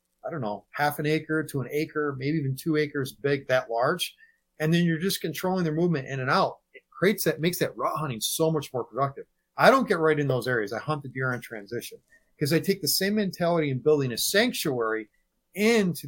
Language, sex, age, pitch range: English, male, 30-49, 130-165 Hz